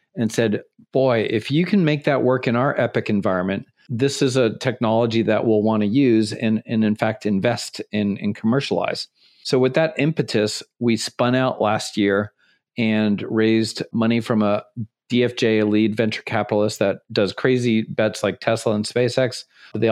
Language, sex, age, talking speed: English, male, 40-59, 170 wpm